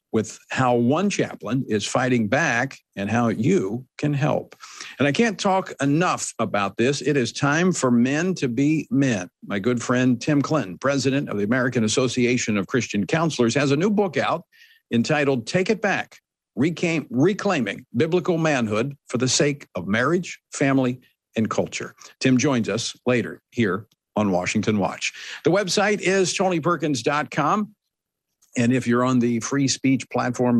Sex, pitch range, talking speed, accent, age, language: male, 110-150 Hz, 155 wpm, American, 50-69, English